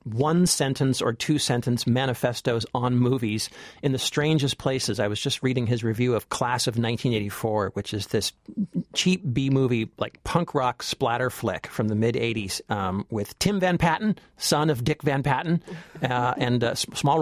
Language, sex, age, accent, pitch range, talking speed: English, male, 50-69, American, 125-170 Hz, 180 wpm